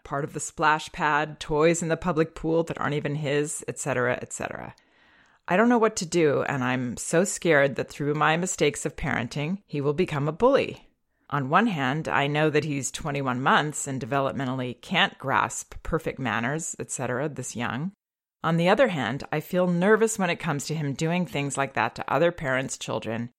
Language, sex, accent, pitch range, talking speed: English, female, American, 135-165 Hz, 190 wpm